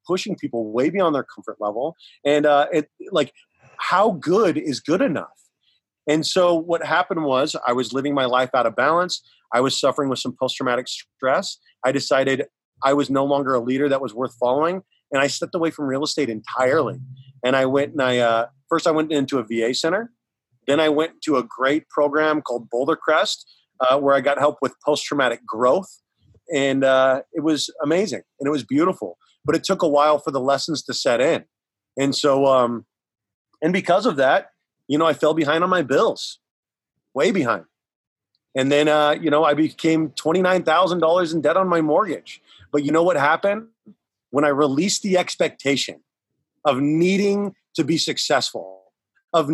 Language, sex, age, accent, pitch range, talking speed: English, male, 30-49, American, 130-160 Hz, 190 wpm